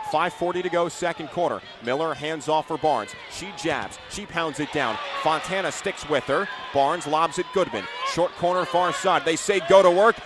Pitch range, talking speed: 150-230 Hz, 185 wpm